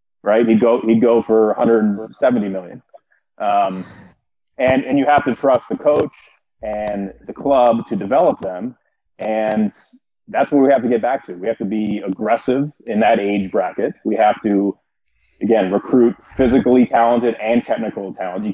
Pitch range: 100-120 Hz